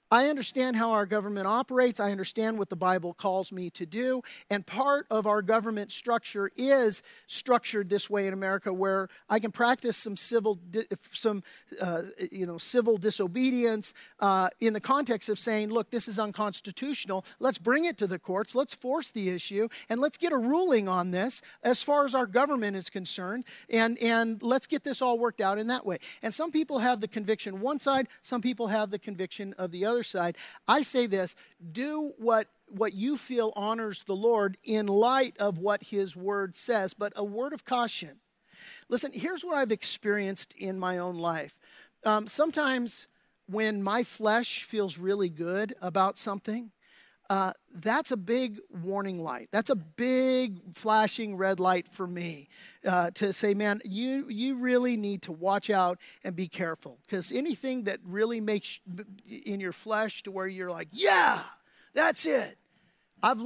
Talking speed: 175 wpm